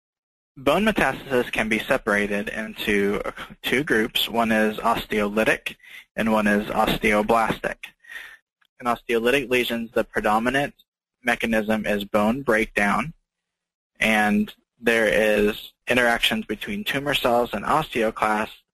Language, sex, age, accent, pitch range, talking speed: English, male, 20-39, American, 105-120 Hz, 105 wpm